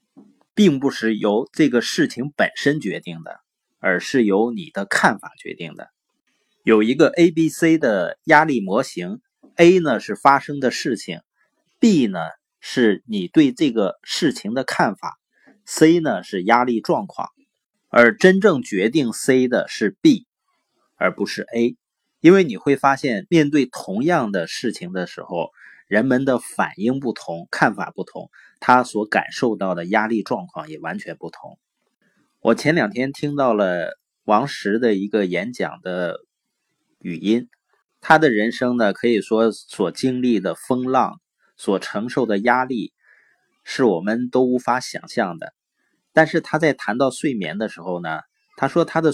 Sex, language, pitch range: male, Chinese, 115-165 Hz